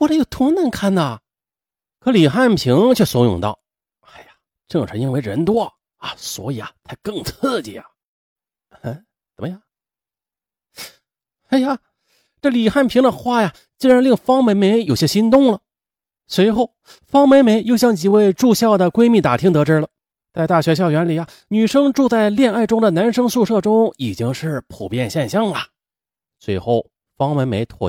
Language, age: Chinese, 30-49